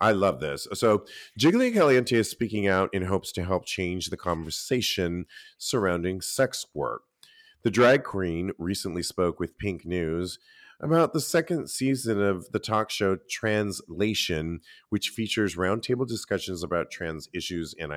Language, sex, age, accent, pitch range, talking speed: English, male, 40-59, American, 90-125 Hz, 145 wpm